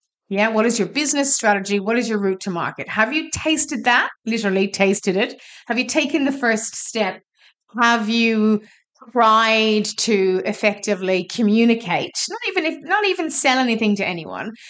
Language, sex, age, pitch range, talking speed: English, female, 30-49, 195-255 Hz, 165 wpm